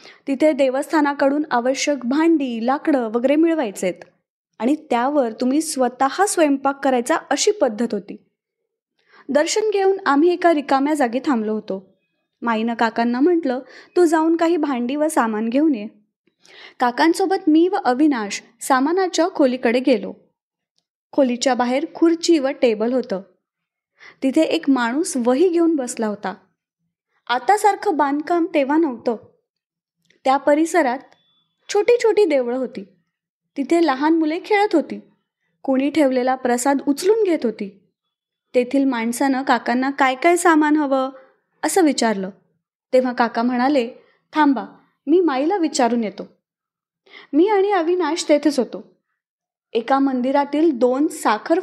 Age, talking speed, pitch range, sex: 20-39, 120 wpm, 245-325 Hz, female